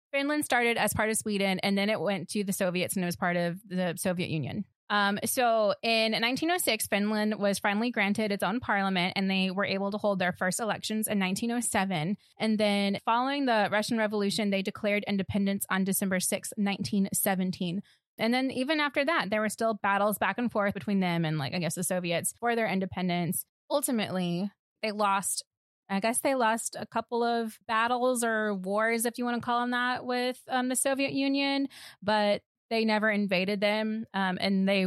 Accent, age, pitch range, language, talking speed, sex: American, 20-39, 190-235 Hz, English, 195 wpm, female